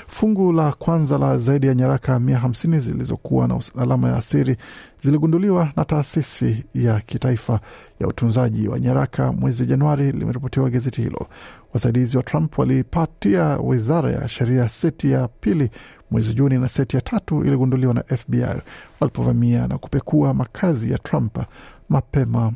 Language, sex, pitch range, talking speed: Swahili, male, 125-150 Hz, 140 wpm